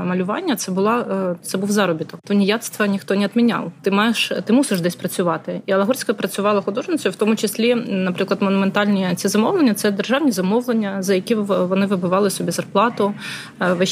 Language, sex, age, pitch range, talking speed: Ukrainian, female, 20-39, 185-210 Hz, 165 wpm